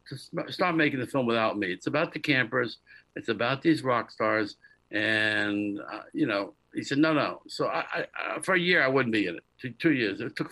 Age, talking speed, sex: 60-79, 230 wpm, male